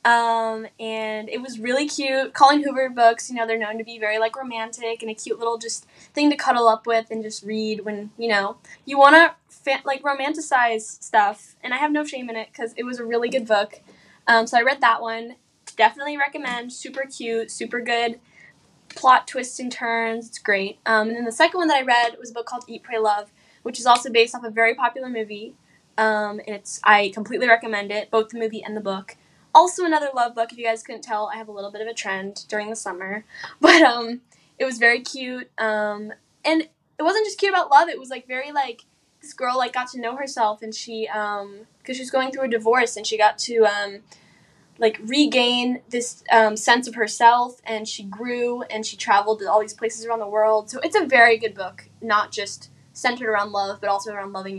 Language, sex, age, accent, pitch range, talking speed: English, female, 10-29, American, 215-250 Hz, 225 wpm